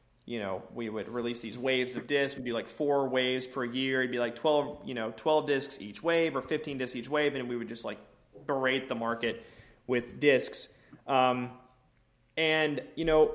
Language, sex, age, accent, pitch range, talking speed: English, male, 20-39, American, 120-135 Hz, 205 wpm